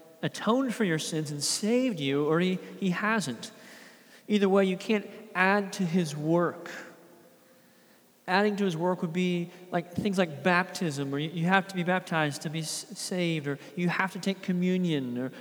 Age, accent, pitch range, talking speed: 40-59, American, 165-215 Hz, 180 wpm